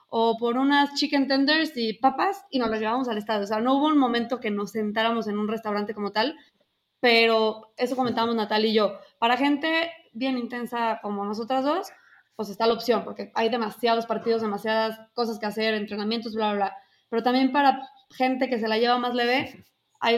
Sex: female